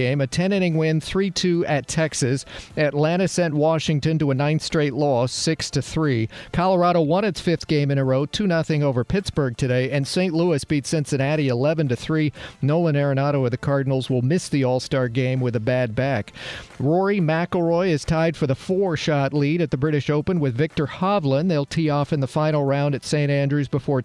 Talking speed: 180 wpm